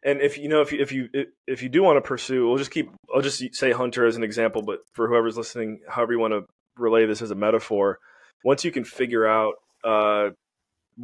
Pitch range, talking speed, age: 105-125 Hz, 235 wpm, 20-39